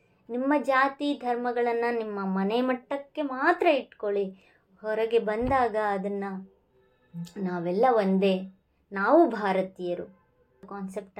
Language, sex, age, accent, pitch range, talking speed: English, male, 20-39, Indian, 195-270 Hz, 85 wpm